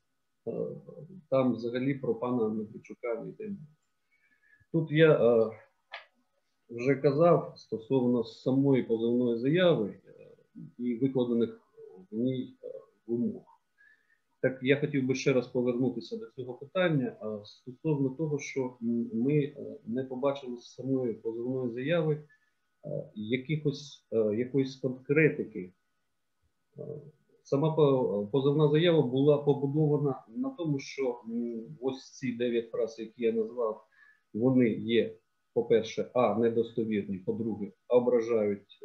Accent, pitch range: native, 120-165 Hz